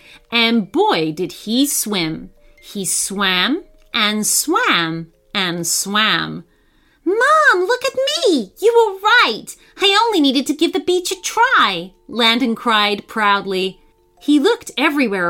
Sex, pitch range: female, 195-325 Hz